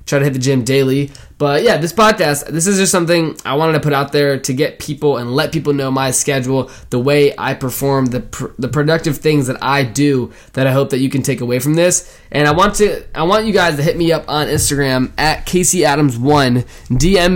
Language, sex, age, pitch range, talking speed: English, male, 20-39, 130-155 Hz, 240 wpm